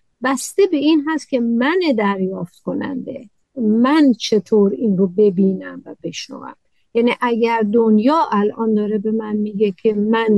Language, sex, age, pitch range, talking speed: Persian, female, 50-69, 220-280 Hz, 145 wpm